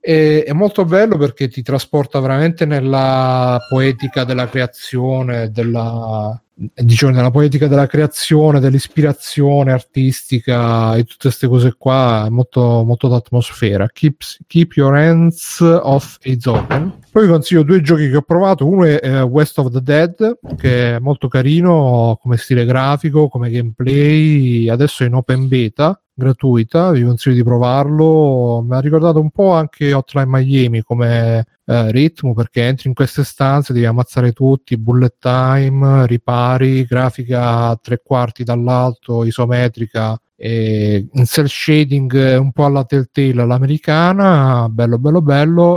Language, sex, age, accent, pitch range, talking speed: Italian, male, 40-59, native, 125-150 Hz, 140 wpm